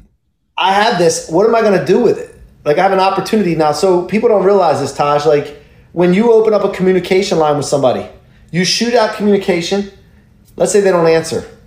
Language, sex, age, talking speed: English, male, 30-49, 210 wpm